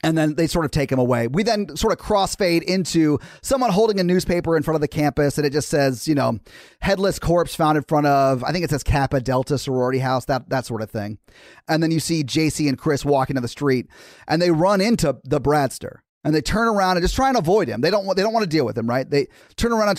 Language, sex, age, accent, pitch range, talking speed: English, male, 30-49, American, 140-185 Hz, 270 wpm